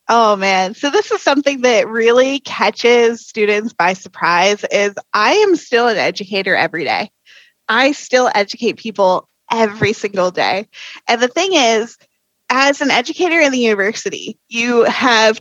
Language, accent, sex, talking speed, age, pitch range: English, American, female, 150 wpm, 20-39, 215-270 Hz